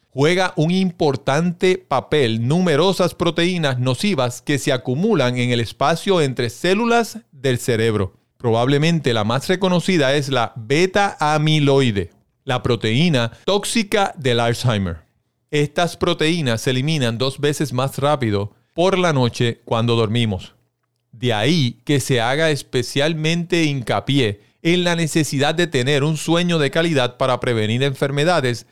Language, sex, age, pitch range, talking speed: Spanish, male, 40-59, 120-160 Hz, 125 wpm